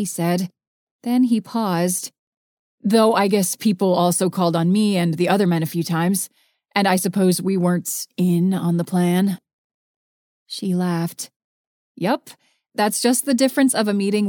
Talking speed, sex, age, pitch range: 165 wpm, female, 30-49, 185-235 Hz